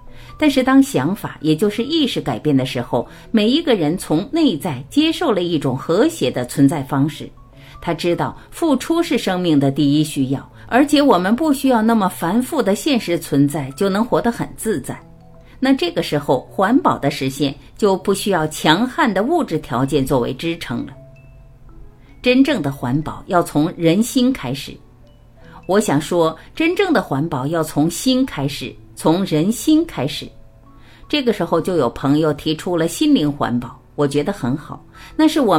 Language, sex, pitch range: Chinese, female, 140-225 Hz